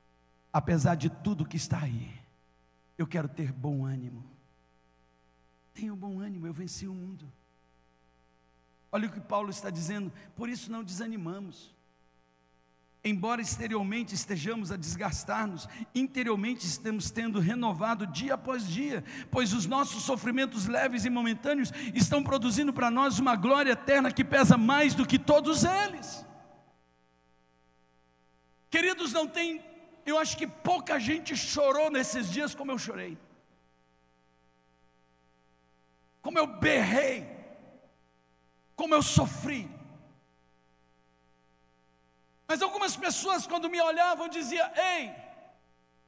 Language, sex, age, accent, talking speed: Portuguese, male, 60-79, Brazilian, 115 wpm